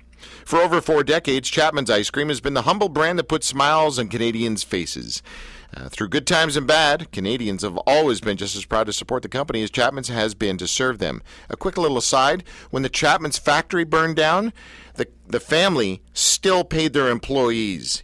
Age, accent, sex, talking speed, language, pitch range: 50-69, American, male, 195 wpm, English, 110-150 Hz